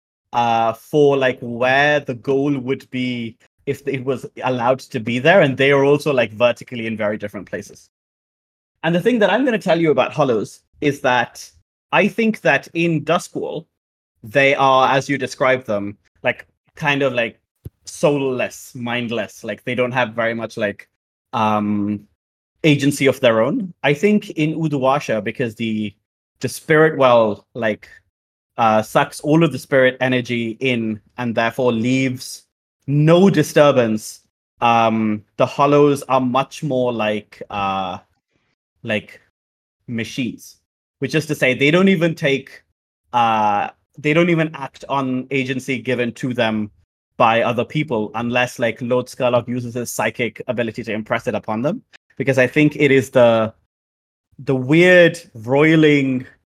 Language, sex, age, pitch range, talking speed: English, male, 30-49, 110-140 Hz, 150 wpm